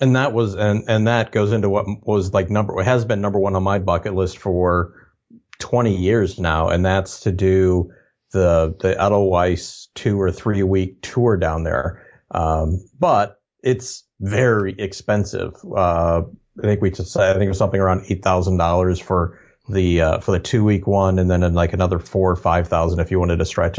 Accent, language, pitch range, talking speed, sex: American, English, 90-105 Hz, 195 wpm, male